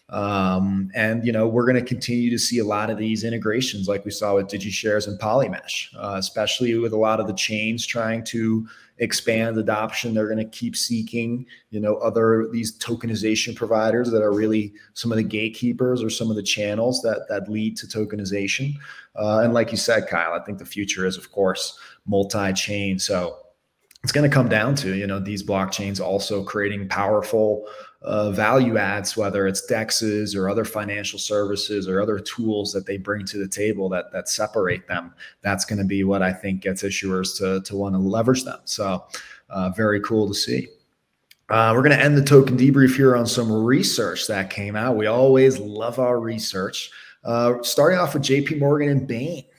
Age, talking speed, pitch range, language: 20-39, 195 wpm, 100-120 Hz, English